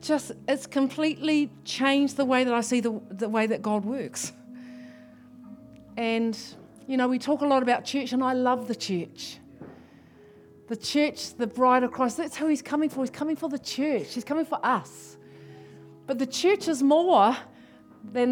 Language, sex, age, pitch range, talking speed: English, female, 40-59, 200-275 Hz, 180 wpm